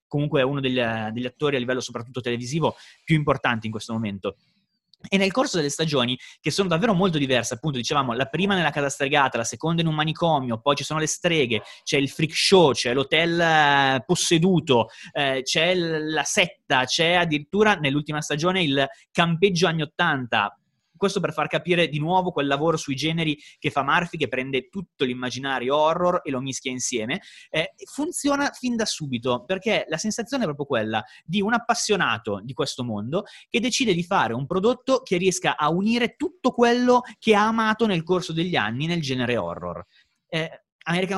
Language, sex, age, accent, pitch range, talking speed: Italian, male, 30-49, native, 130-180 Hz, 180 wpm